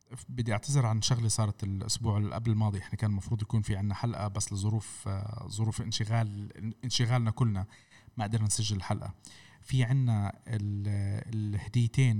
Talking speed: 145 wpm